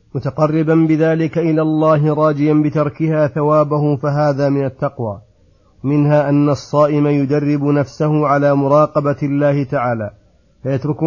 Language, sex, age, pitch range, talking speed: Arabic, male, 40-59, 140-155 Hz, 110 wpm